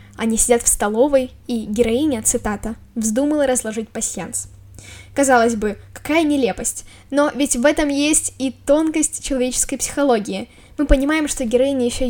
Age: 10-29